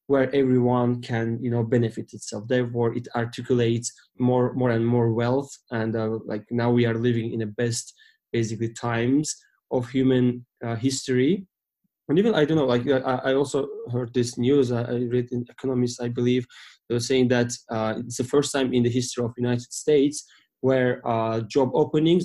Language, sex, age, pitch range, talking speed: English, male, 20-39, 115-130 Hz, 180 wpm